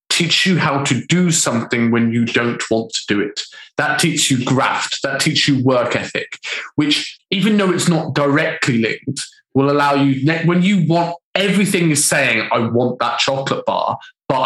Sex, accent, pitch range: male, British, 130-180 Hz